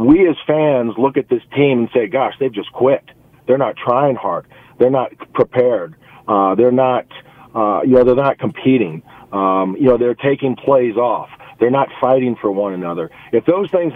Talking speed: 195 wpm